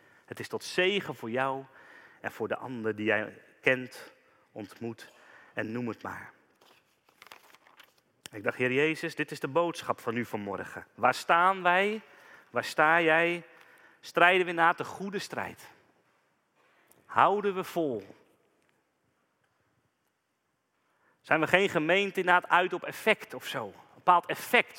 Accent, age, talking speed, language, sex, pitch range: Dutch, 40-59, 140 wpm, Dutch, male, 135-190 Hz